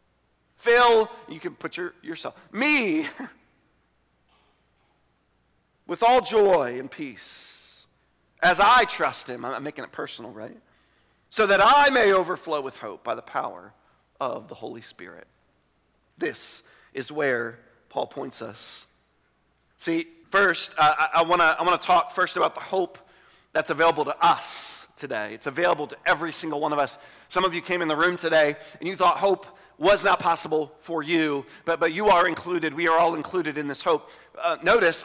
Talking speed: 165 wpm